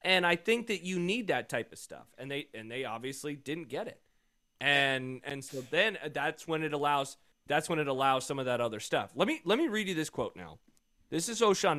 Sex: male